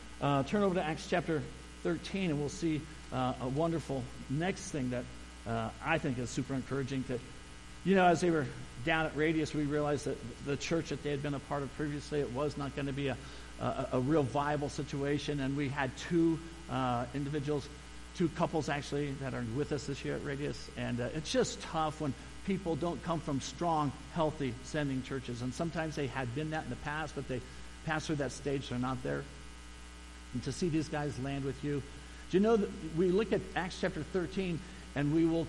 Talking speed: 210 wpm